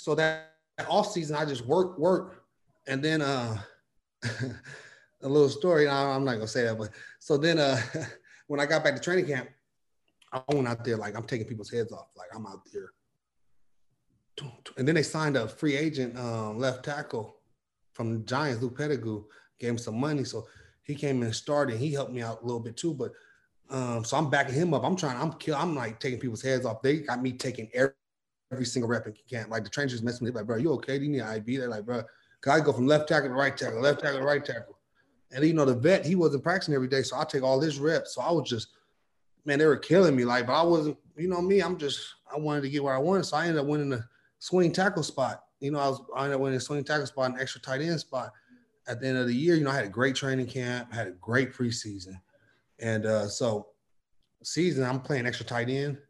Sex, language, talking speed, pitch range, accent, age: male, English, 250 wpm, 120-150 Hz, American, 30-49